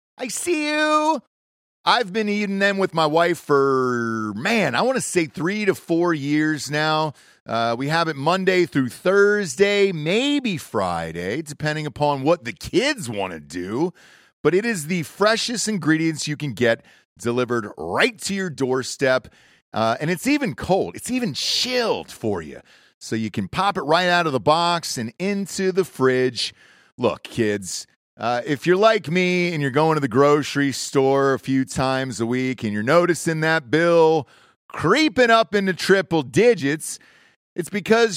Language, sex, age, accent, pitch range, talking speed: English, male, 30-49, American, 135-200 Hz, 170 wpm